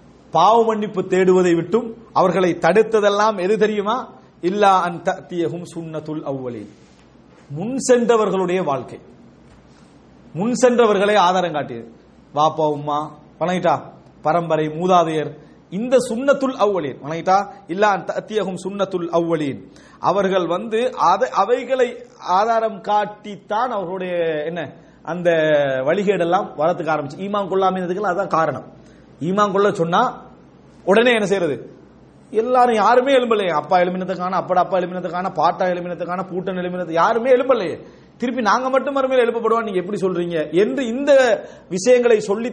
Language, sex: English, male